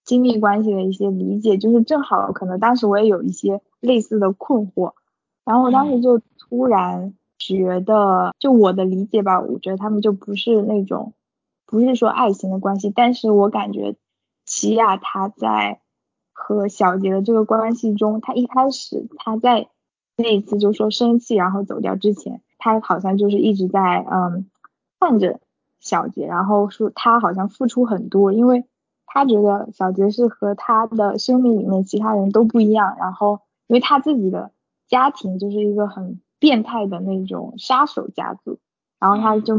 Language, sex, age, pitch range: Chinese, female, 10-29, 195-230 Hz